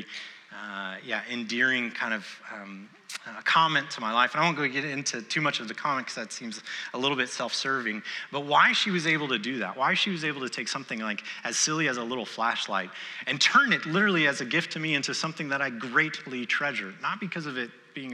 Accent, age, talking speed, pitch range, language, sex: American, 30-49, 240 wpm, 120-170 Hz, English, male